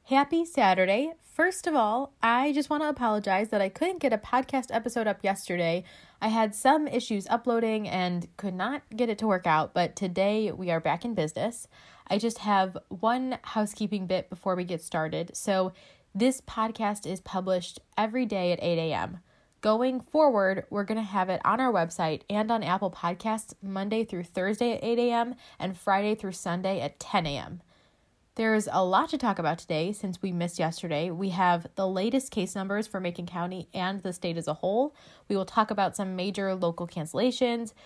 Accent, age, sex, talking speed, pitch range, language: American, 20-39, female, 190 wpm, 180-230 Hz, English